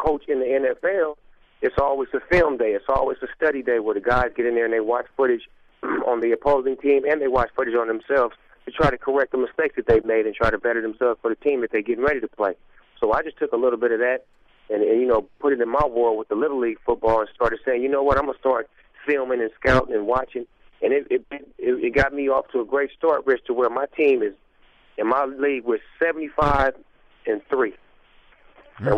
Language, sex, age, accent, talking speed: English, male, 30-49, American, 250 wpm